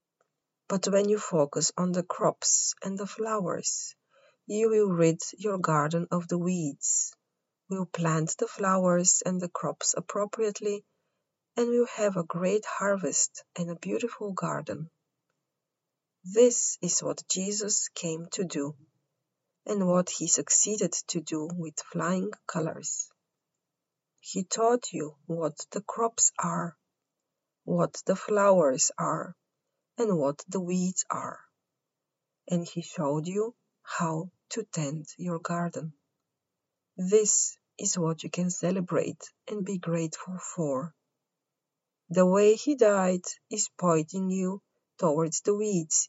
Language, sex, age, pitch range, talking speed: English, female, 30-49, 165-205 Hz, 125 wpm